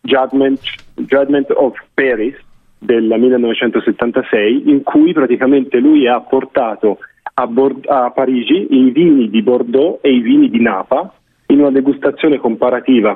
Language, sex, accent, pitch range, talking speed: Italian, male, native, 120-180 Hz, 130 wpm